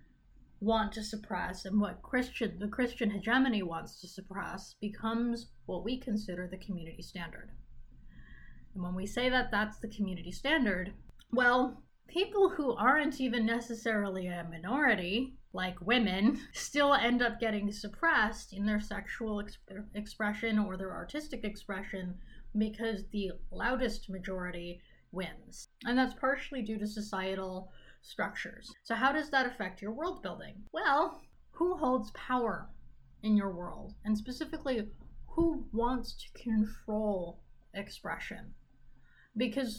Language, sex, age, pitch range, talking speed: English, female, 30-49, 185-245 Hz, 130 wpm